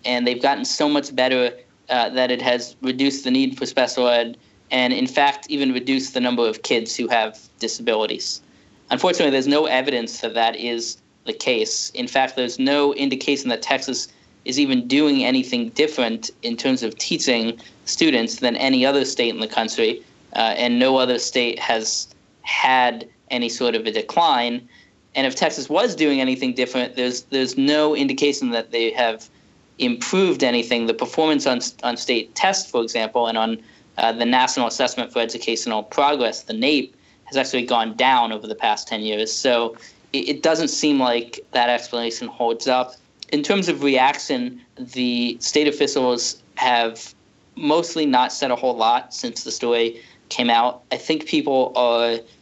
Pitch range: 120-145 Hz